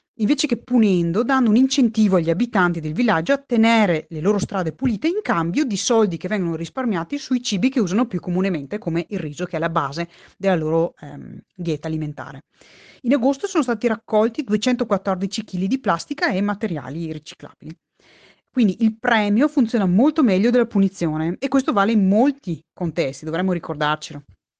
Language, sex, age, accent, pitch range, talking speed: Italian, female, 30-49, native, 170-245 Hz, 170 wpm